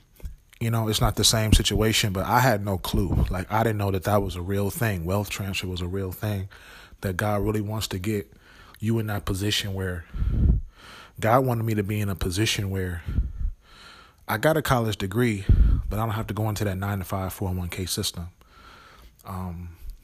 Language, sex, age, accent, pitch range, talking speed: English, male, 20-39, American, 95-110 Hz, 210 wpm